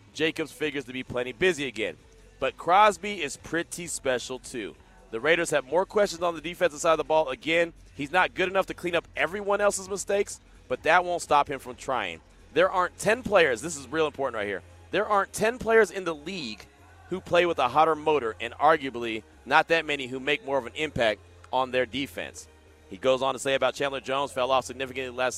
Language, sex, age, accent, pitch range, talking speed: English, male, 30-49, American, 125-155 Hz, 220 wpm